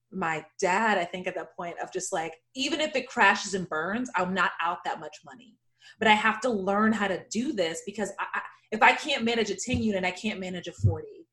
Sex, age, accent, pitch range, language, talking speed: female, 20-39, American, 185-245 Hz, English, 245 wpm